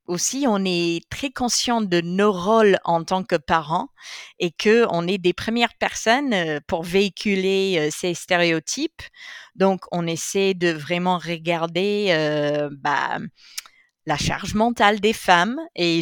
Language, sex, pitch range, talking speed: French, female, 175-230 Hz, 135 wpm